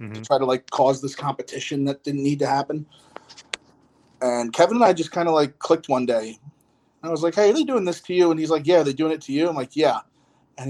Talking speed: 270 wpm